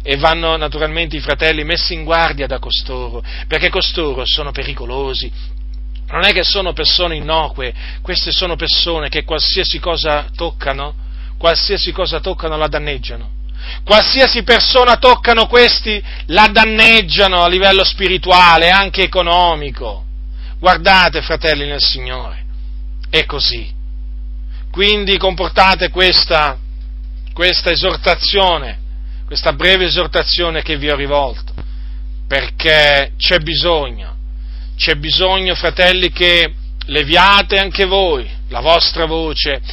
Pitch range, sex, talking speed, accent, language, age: 120-180 Hz, male, 110 wpm, native, Italian, 40-59